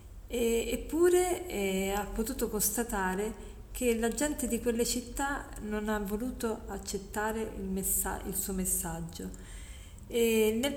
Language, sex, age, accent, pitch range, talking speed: Italian, female, 40-59, native, 195-235 Hz, 110 wpm